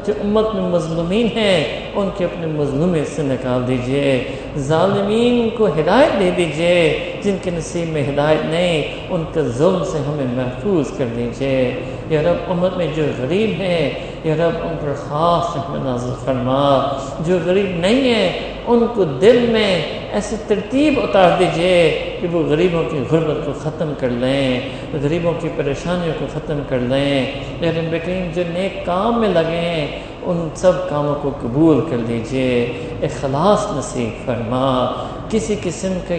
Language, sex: English, male